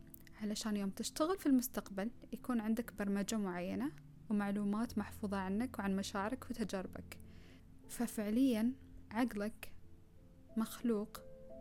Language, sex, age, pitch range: Arabic, female, 10-29, 195-235 Hz